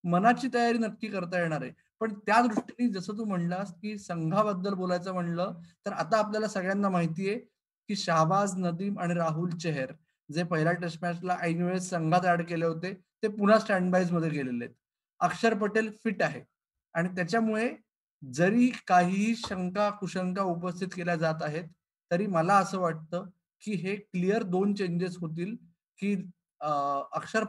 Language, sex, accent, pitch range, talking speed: Marathi, male, native, 175-215 Hz, 95 wpm